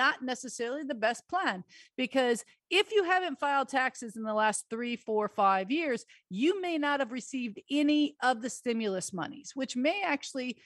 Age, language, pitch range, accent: 40-59, English, 235-295 Hz, American